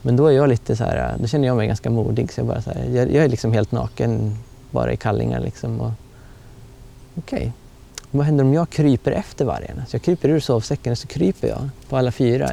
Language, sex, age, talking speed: Swedish, male, 20-39, 240 wpm